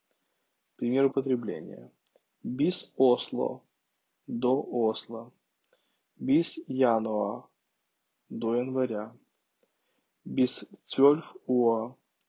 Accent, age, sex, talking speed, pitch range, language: native, 20-39, male, 60 wpm, 115-130 Hz, Russian